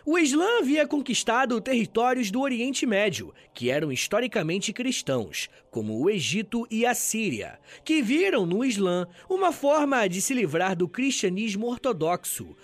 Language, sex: Portuguese, male